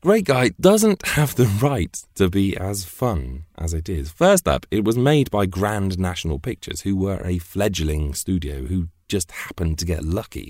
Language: English